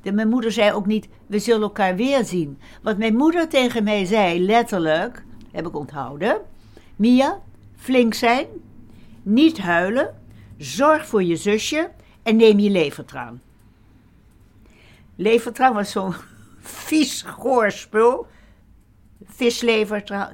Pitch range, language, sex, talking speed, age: 165-225 Hz, Dutch, female, 115 wpm, 60-79